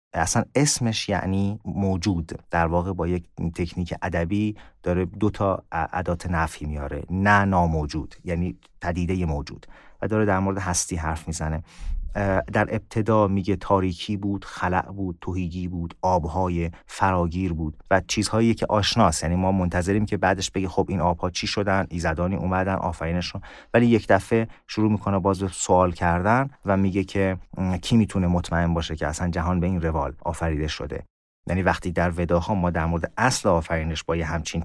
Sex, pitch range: male, 85-100 Hz